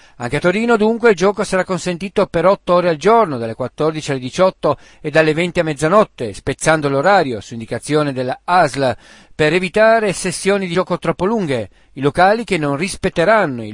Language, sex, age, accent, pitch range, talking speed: Italian, male, 50-69, native, 140-195 Hz, 175 wpm